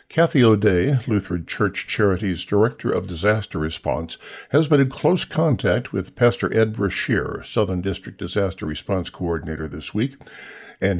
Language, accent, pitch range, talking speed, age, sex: English, American, 95-135 Hz, 140 wpm, 60-79, male